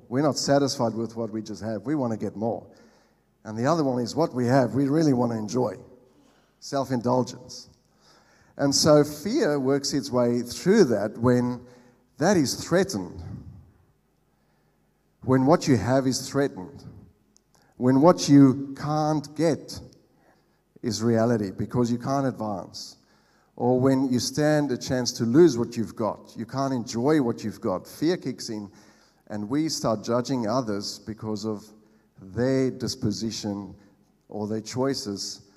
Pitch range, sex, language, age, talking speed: 110-140 Hz, male, English, 50-69, 150 wpm